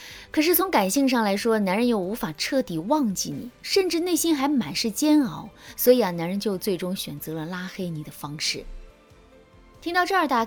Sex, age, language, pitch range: female, 20-39, Chinese, 175-265 Hz